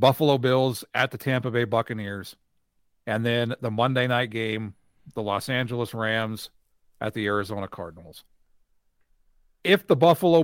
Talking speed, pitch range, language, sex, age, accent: 140 wpm, 110-145 Hz, English, male, 40-59, American